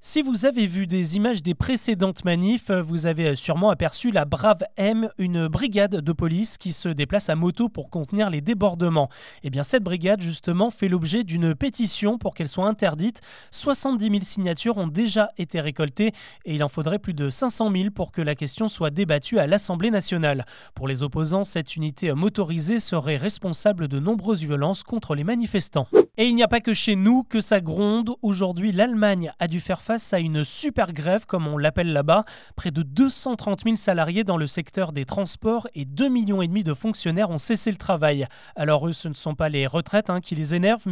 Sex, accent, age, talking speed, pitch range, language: male, French, 20-39, 200 wpm, 165-215 Hz, French